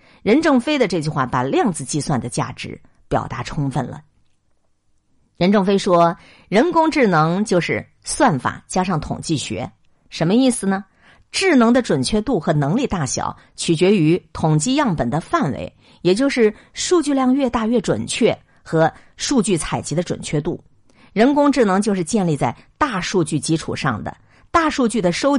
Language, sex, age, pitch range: Chinese, female, 50-69, 135-220 Hz